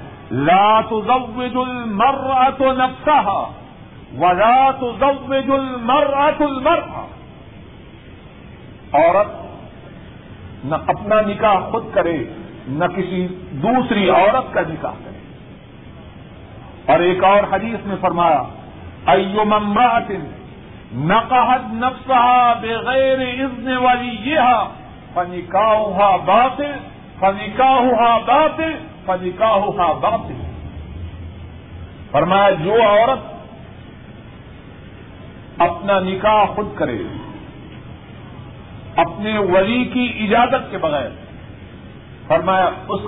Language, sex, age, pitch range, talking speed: Urdu, male, 50-69, 185-250 Hz, 80 wpm